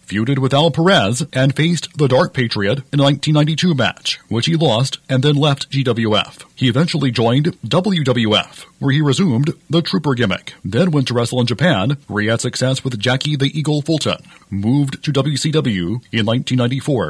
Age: 40-59